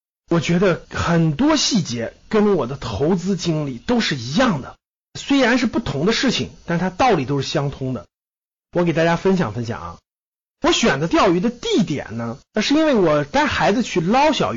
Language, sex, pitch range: Chinese, male, 165-265 Hz